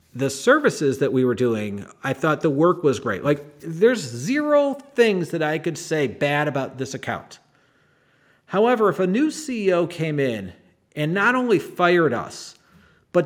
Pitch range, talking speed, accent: 145-180 Hz, 165 wpm, American